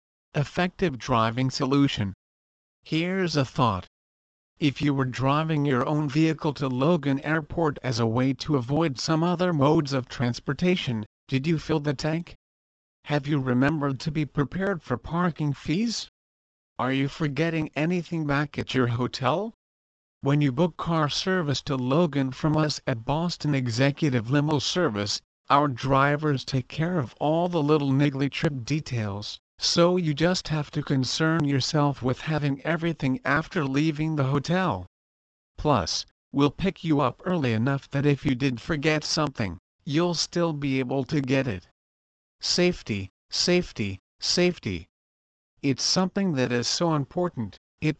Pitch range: 125-155 Hz